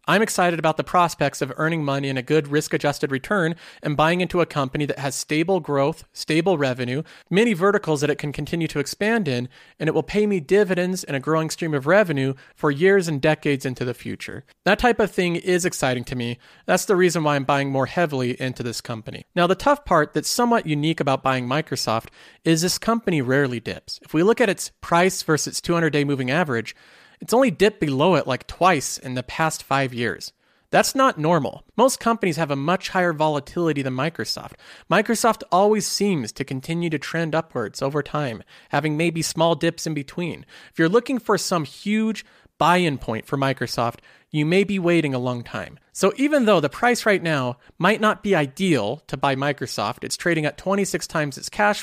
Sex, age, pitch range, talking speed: male, 40-59, 140-185 Hz, 205 wpm